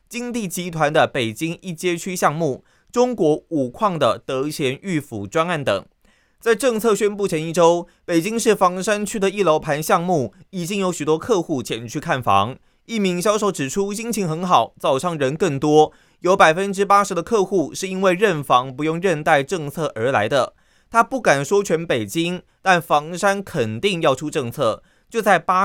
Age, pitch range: 20-39, 145-200 Hz